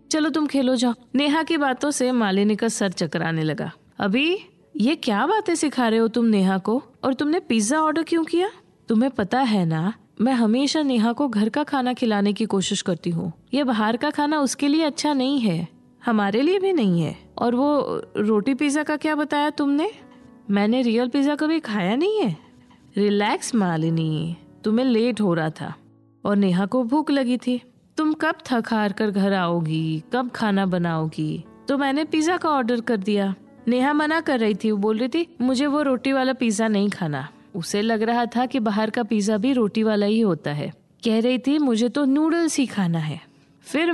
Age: 20-39